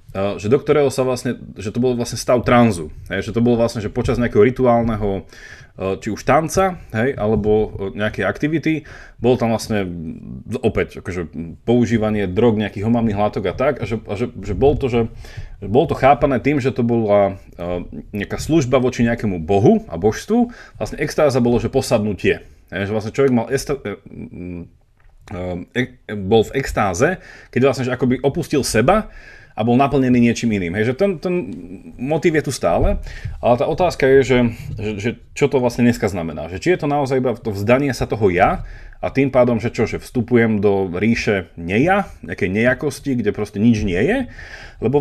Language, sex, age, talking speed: Slovak, male, 30-49, 175 wpm